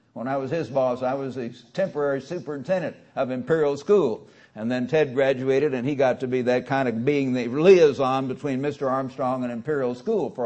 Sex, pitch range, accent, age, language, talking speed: male, 130-170 Hz, American, 60-79, English, 200 wpm